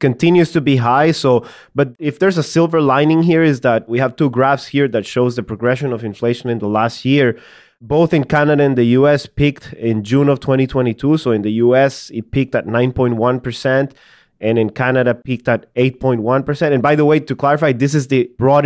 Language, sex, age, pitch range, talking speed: English, male, 20-39, 120-145 Hz, 205 wpm